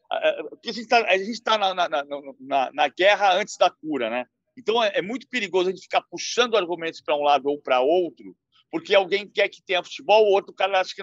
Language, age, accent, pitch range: Portuguese, 50-69, Brazilian, 185-260 Hz